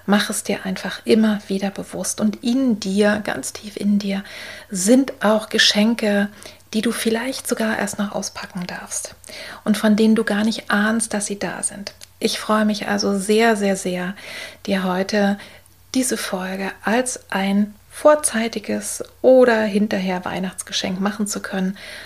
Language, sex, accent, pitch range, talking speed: German, female, German, 195-225 Hz, 150 wpm